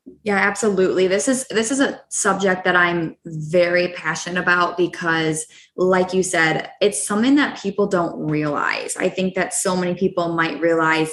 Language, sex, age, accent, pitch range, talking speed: English, female, 20-39, American, 170-205 Hz, 165 wpm